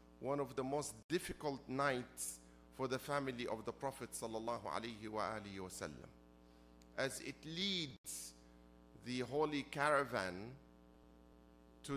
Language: English